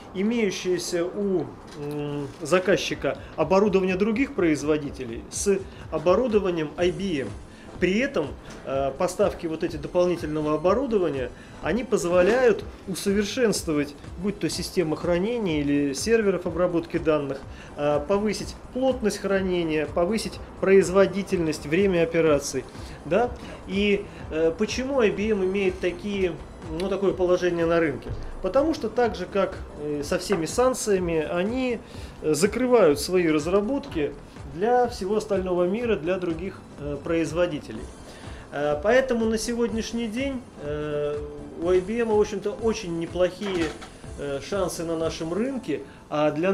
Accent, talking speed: native, 100 wpm